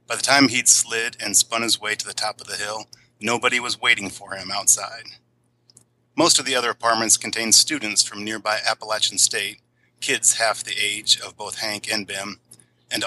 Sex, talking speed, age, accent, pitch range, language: male, 195 wpm, 40-59, American, 105-120 Hz, English